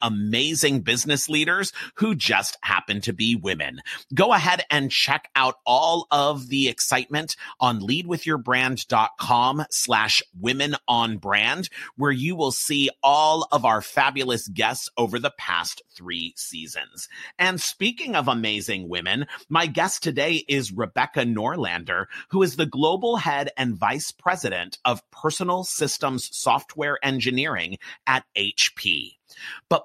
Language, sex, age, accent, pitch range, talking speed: English, male, 30-49, American, 130-165 Hz, 130 wpm